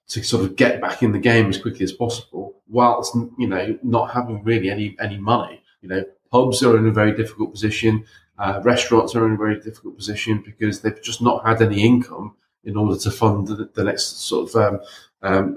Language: English